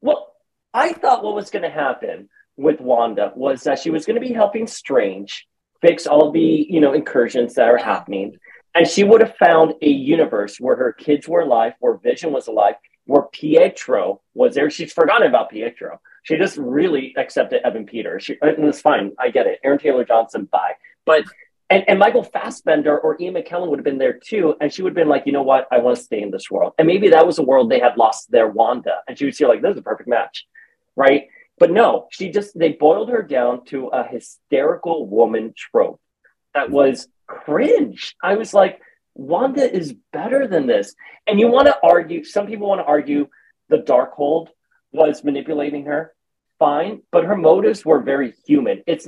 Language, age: English, 30-49